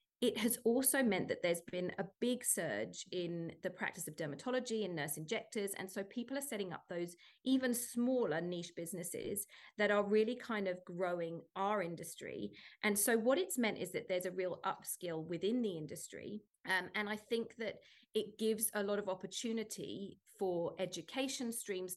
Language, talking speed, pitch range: English, 180 wpm, 175-215 Hz